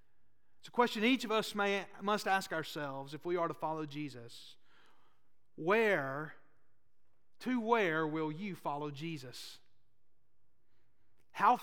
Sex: male